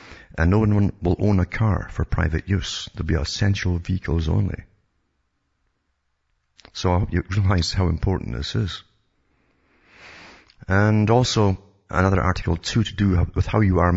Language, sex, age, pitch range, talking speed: English, male, 50-69, 80-95 Hz, 155 wpm